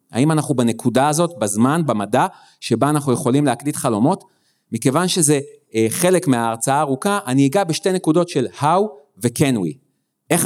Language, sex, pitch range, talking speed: Hebrew, male, 130-180 Hz, 145 wpm